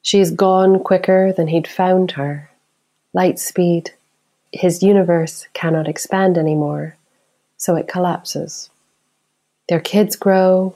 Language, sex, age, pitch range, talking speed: English, female, 30-49, 160-185 Hz, 110 wpm